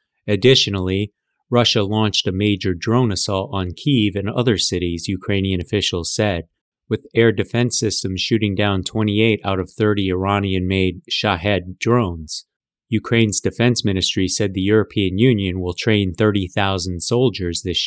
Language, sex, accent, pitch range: English, male, American, 95-110 Hz